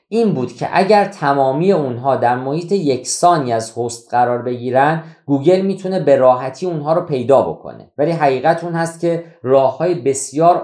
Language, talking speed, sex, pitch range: Persian, 160 wpm, male, 130-175 Hz